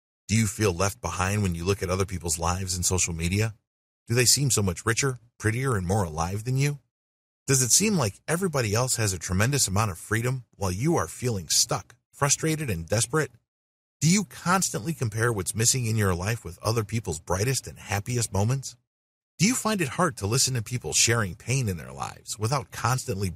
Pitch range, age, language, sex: 95-135 Hz, 30-49, English, male